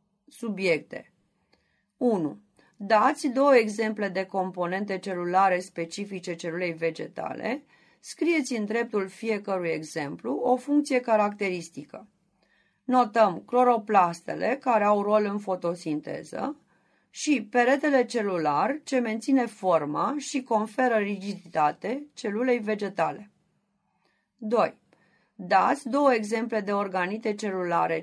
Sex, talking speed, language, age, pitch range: female, 90 wpm, Romanian, 30-49, 185-245 Hz